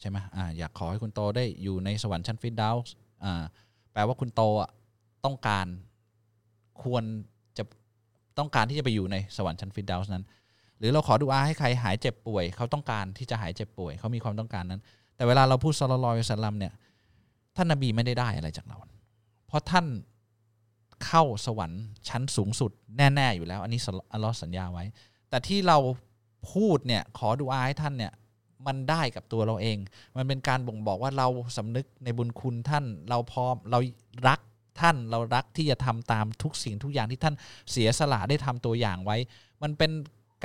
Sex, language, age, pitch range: male, Thai, 20-39, 110-135 Hz